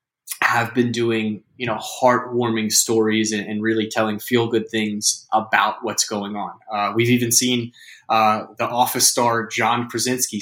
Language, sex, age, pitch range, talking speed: English, male, 20-39, 110-120 Hz, 155 wpm